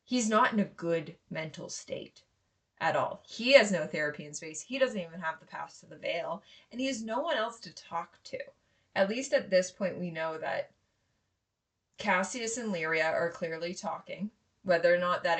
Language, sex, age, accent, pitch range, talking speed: English, female, 20-39, American, 160-200 Hz, 200 wpm